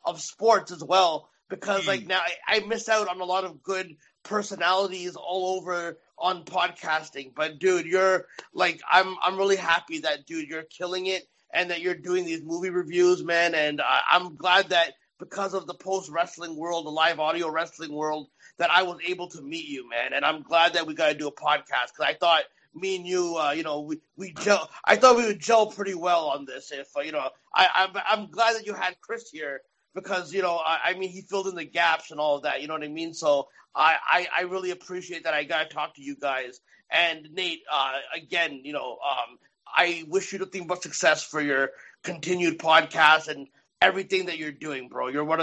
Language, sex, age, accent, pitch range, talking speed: English, male, 30-49, American, 160-185 Hz, 225 wpm